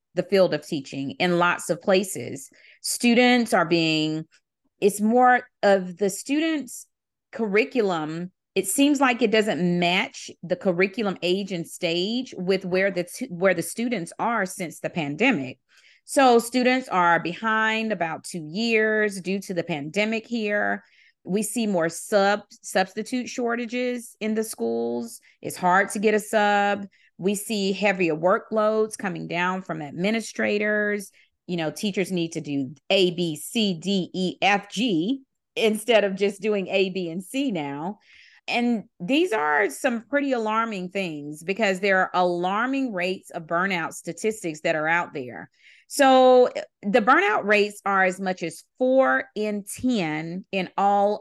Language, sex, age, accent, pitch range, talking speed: English, female, 30-49, American, 175-220 Hz, 150 wpm